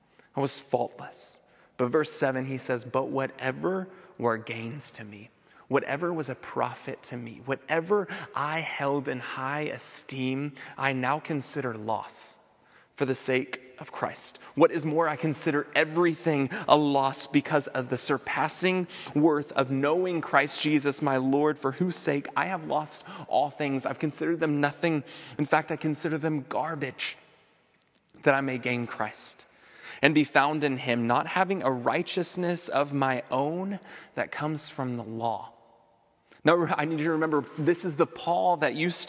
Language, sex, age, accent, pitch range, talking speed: English, male, 30-49, American, 135-165 Hz, 165 wpm